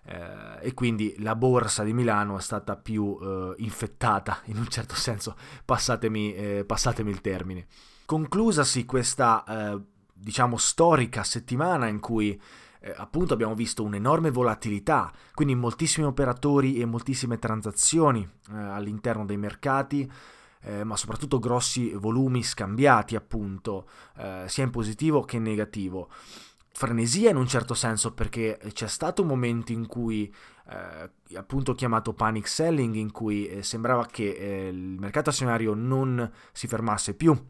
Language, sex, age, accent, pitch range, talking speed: Italian, male, 20-39, native, 105-130 Hz, 140 wpm